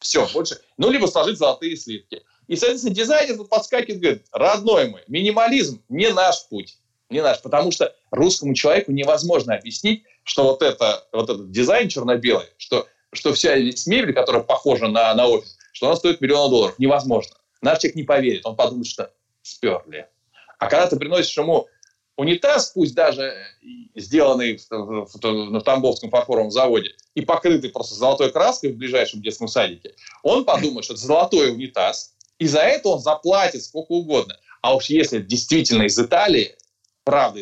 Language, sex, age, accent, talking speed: Russian, male, 20-39, native, 155 wpm